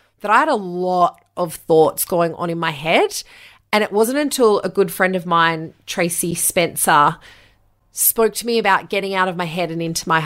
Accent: Australian